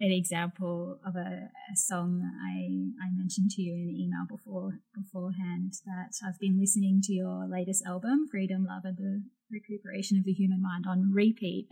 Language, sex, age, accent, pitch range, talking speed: English, female, 20-39, Australian, 185-210 Hz, 180 wpm